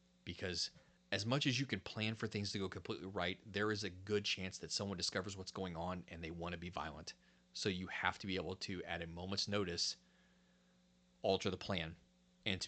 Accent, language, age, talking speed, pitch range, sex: American, English, 30-49, 220 wpm, 85-105 Hz, male